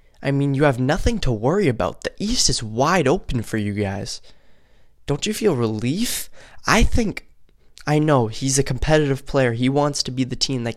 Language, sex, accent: English, male, American